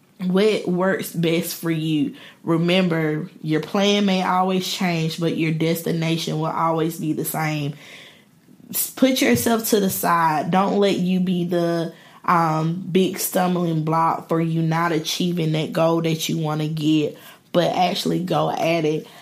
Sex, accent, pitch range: female, American, 165-200 Hz